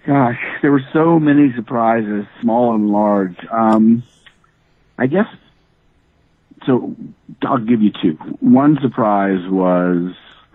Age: 50-69